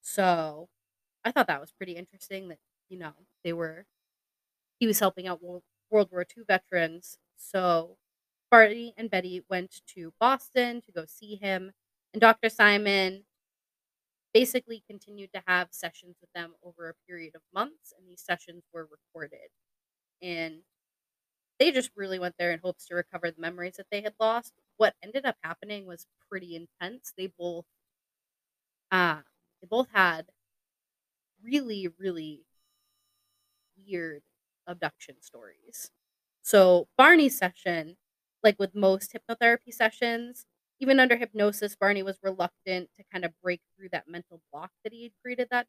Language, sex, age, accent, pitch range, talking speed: English, female, 20-39, American, 170-205 Hz, 145 wpm